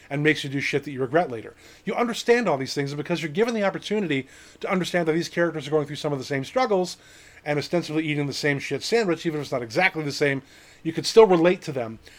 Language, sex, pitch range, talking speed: English, male, 140-185 Hz, 260 wpm